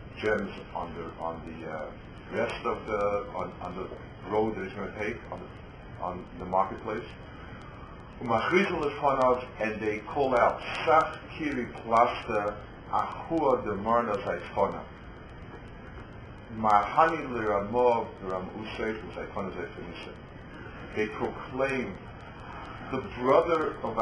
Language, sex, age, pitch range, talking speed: English, male, 50-69, 95-115 Hz, 110 wpm